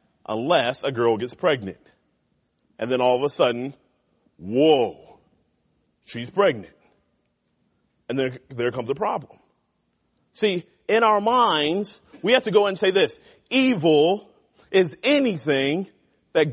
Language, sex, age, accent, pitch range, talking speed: English, male, 40-59, American, 180-250 Hz, 125 wpm